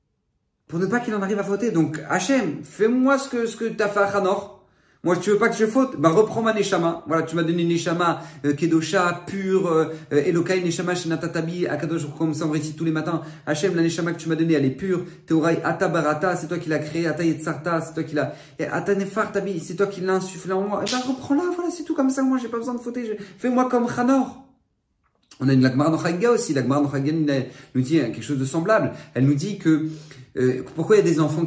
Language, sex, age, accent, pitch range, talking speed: French, male, 40-59, French, 140-190 Hz, 240 wpm